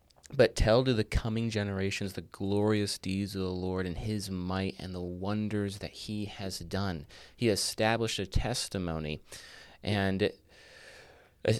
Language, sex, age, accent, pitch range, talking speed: English, male, 30-49, American, 90-105 Hz, 145 wpm